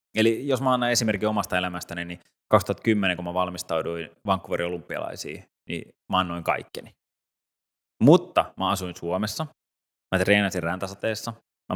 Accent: native